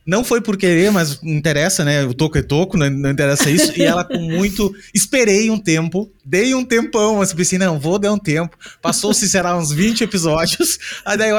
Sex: male